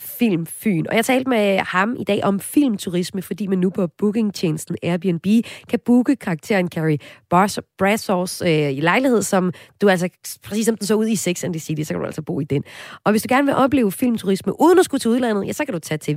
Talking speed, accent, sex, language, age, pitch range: 230 wpm, native, female, Danish, 30-49, 155-220 Hz